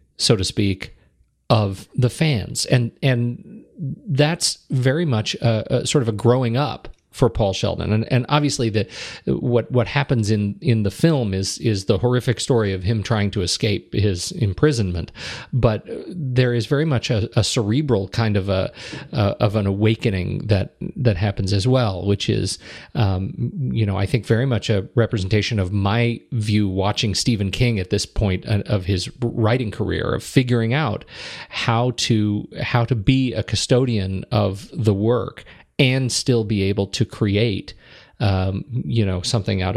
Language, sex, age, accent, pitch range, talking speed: English, male, 40-59, American, 100-125 Hz, 170 wpm